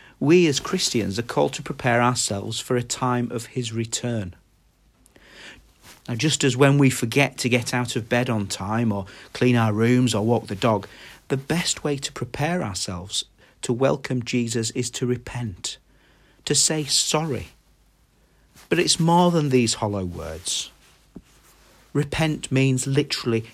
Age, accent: 40-59, British